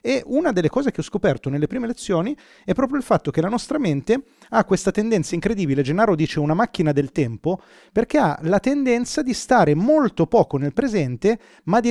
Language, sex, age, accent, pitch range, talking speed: Italian, male, 30-49, native, 150-225 Hz, 200 wpm